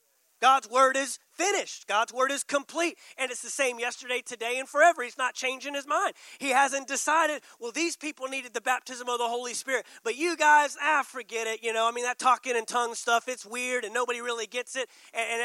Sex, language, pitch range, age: male, English, 235-285 Hz, 30-49